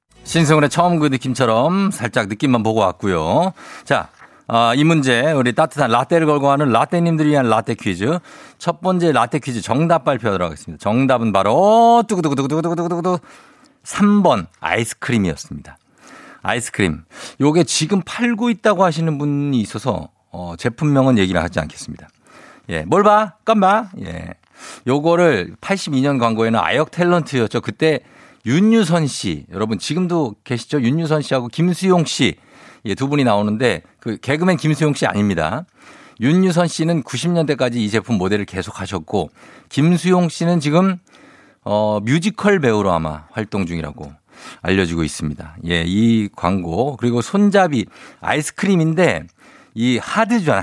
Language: Korean